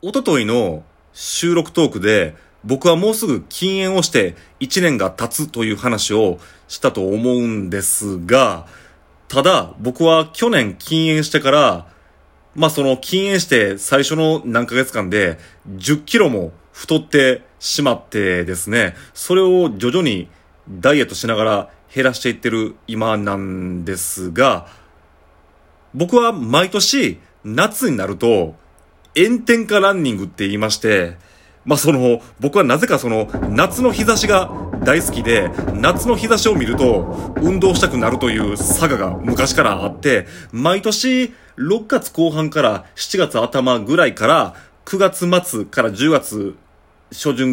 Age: 30-49